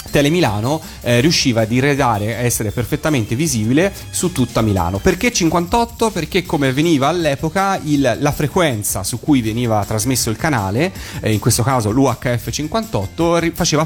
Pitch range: 110-135 Hz